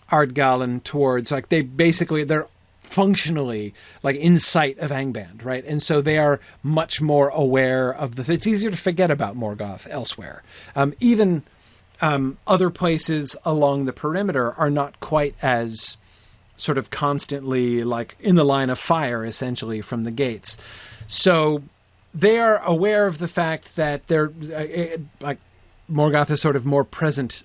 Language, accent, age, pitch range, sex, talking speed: English, American, 40-59, 110-155 Hz, male, 155 wpm